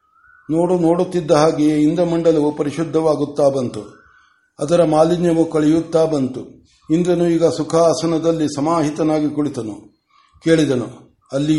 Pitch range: 145-165 Hz